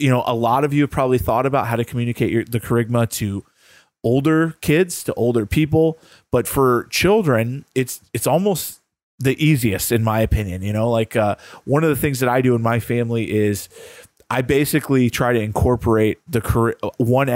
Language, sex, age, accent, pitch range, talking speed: English, male, 20-39, American, 110-125 Hz, 190 wpm